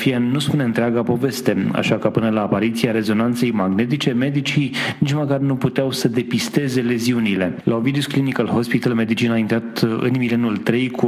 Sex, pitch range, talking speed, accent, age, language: male, 115-130 Hz, 160 wpm, native, 30-49, Romanian